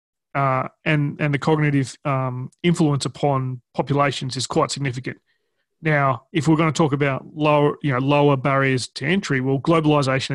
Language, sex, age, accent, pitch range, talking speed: English, male, 30-49, Australian, 135-155 Hz, 160 wpm